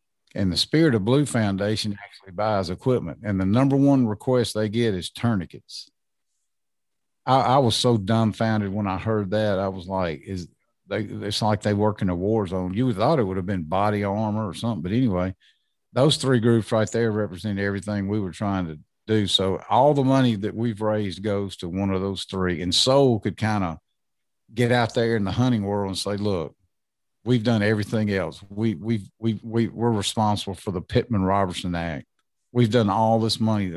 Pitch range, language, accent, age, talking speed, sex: 95-115 Hz, English, American, 50-69, 200 wpm, male